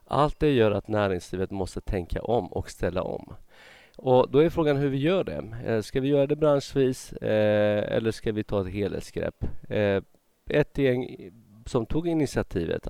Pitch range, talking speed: 90-115 Hz, 165 wpm